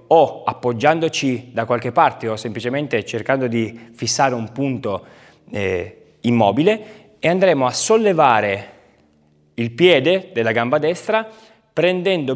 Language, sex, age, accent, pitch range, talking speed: Italian, male, 30-49, native, 125-185 Hz, 115 wpm